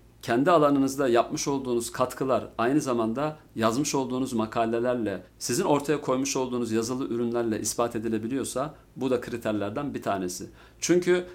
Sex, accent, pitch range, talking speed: male, native, 115-145 Hz, 125 wpm